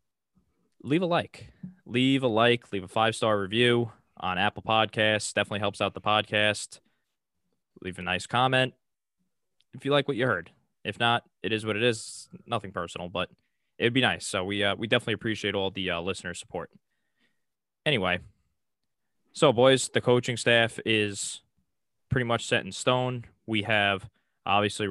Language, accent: English, American